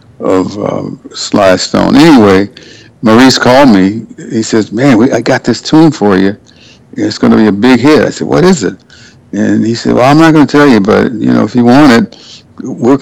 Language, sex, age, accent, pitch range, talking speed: English, male, 60-79, American, 105-130 Hz, 215 wpm